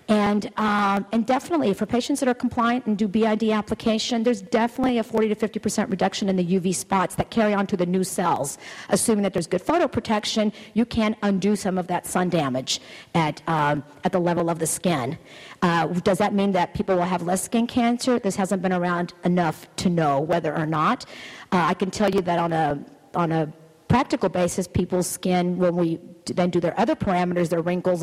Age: 50-69